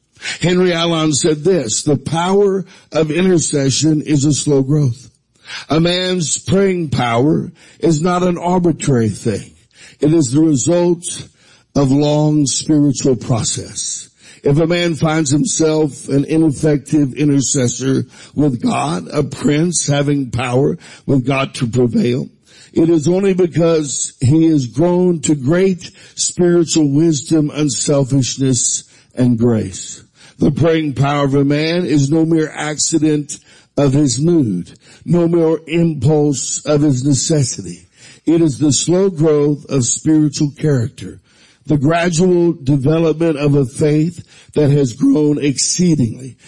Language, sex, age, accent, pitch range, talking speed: English, male, 60-79, American, 140-165 Hz, 130 wpm